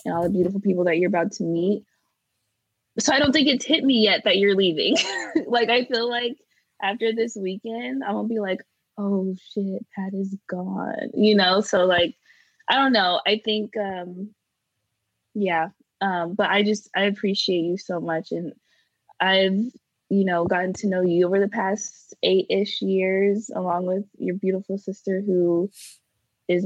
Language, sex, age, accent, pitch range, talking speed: English, female, 20-39, American, 175-205 Hz, 180 wpm